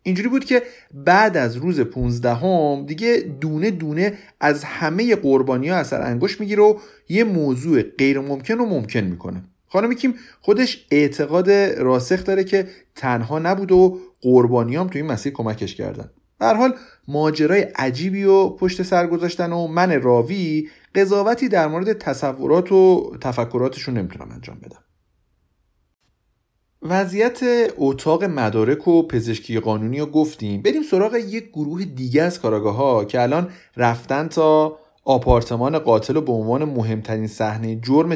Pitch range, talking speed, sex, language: 120-195 Hz, 135 wpm, male, Persian